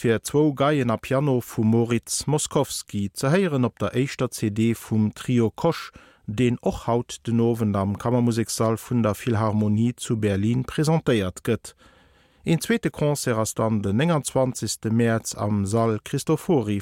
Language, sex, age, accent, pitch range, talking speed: Dutch, male, 50-69, German, 110-140 Hz, 140 wpm